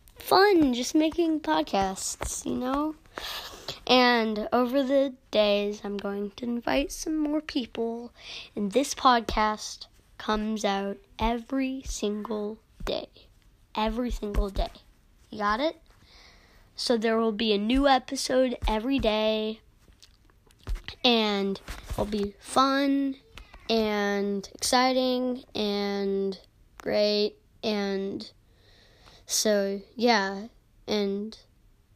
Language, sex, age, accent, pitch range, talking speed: English, female, 20-39, American, 200-255 Hz, 100 wpm